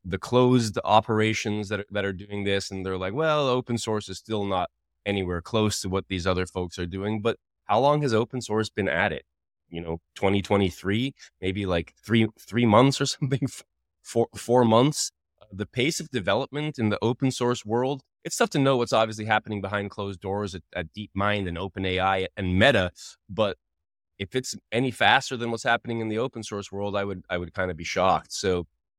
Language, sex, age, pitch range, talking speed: English, male, 20-39, 100-115 Hz, 205 wpm